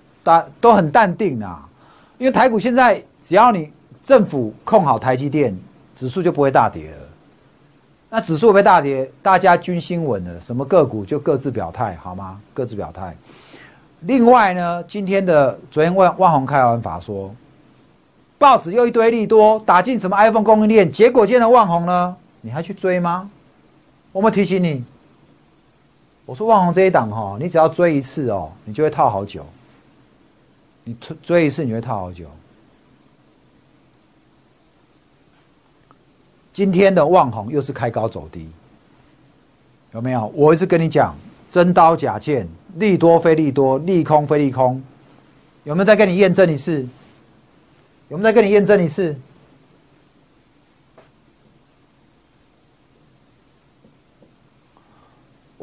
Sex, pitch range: male, 130-190 Hz